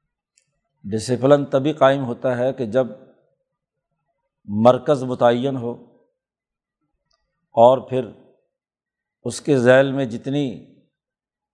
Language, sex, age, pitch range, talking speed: Urdu, male, 50-69, 125-145 Hz, 95 wpm